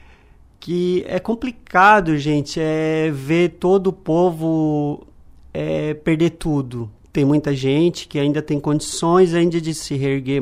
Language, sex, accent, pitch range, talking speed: Portuguese, male, Brazilian, 130-180 Hz, 130 wpm